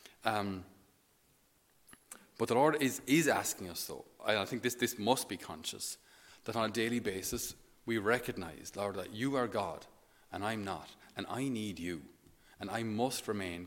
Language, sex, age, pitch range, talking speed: English, male, 30-49, 100-125 Hz, 175 wpm